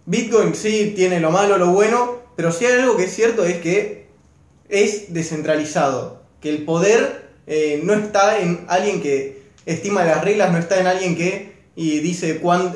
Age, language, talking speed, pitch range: 20-39, Spanish, 185 wpm, 155-205 Hz